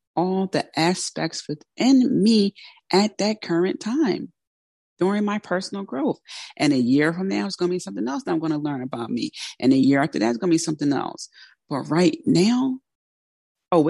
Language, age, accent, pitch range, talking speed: English, 30-49, American, 155-230 Hz, 195 wpm